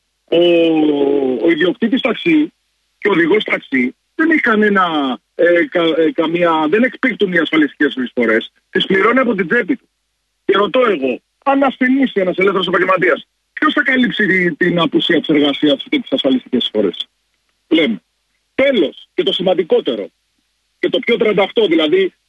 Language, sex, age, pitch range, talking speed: Greek, male, 40-59, 170-255 Hz, 145 wpm